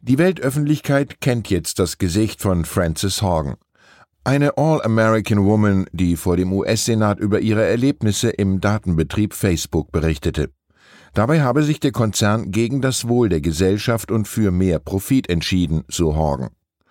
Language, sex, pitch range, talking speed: German, male, 85-120 Hz, 140 wpm